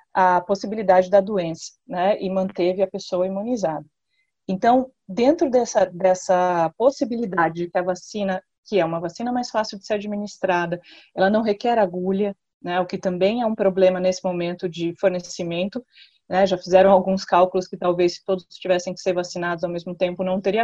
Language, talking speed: Portuguese, 175 wpm